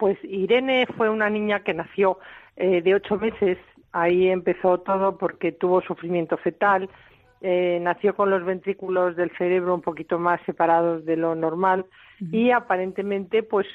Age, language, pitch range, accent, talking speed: 50-69, Spanish, 175-210 Hz, Spanish, 155 wpm